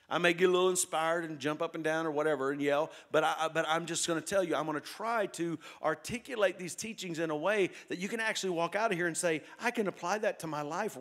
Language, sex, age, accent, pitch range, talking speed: English, male, 50-69, American, 155-200 Hz, 280 wpm